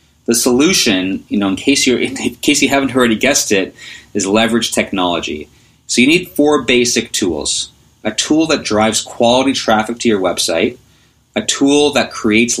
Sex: male